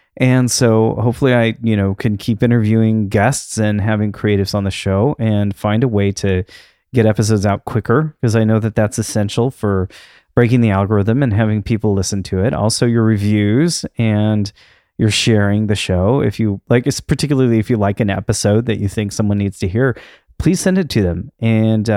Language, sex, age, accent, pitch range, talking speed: English, male, 30-49, American, 100-120 Hz, 195 wpm